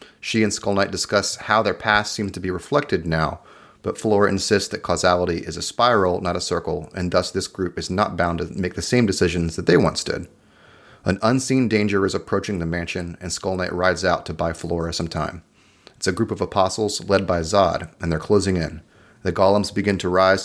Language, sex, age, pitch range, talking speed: English, male, 30-49, 85-105 Hz, 215 wpm